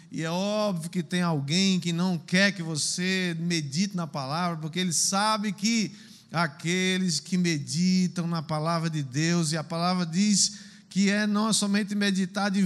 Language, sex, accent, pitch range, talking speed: Portuguese, male, Brazilian, 165-215 Hz, 165 wpm